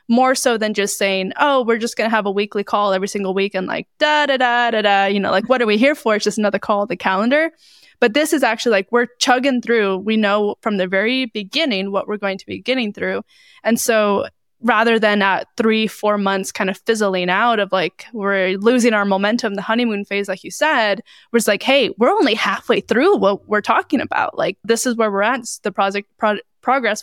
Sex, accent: female, American